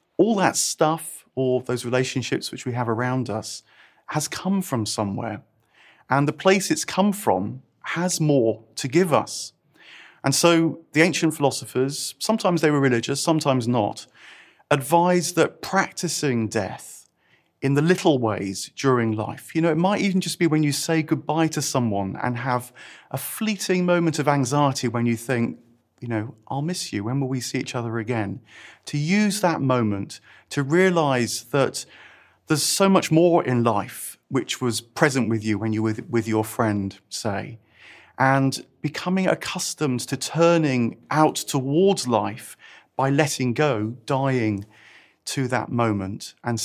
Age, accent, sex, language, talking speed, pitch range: 30-49, British, male, English, 160 wpm, 115-165 Hz